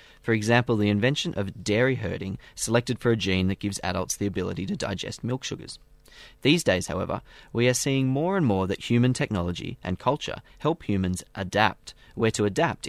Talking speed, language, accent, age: 185 wpm, English, Australian, 30-49